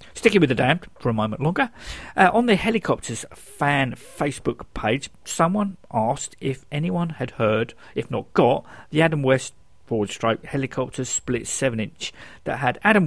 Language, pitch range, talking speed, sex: English, 115-165 Hz, 155 wpm, male